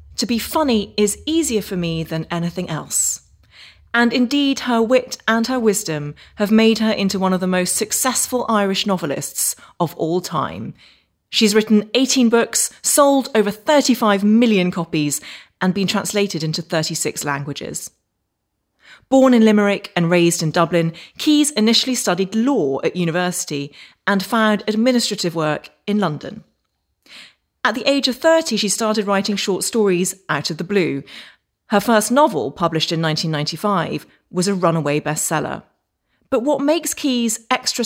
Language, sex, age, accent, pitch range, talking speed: English, female, 30-49, British, 170-230 Hz, 150 wpm